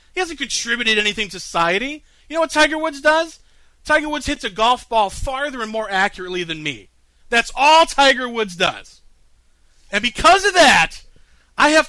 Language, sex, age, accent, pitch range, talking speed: English, male, 40-59, American, 185-290 Hz, 175 wpm